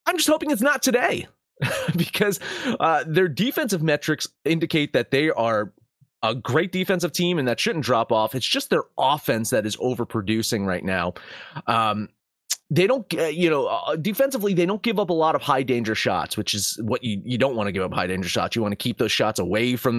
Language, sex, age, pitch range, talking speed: English, male, 30-49, 125-195 Hz, 215 wpm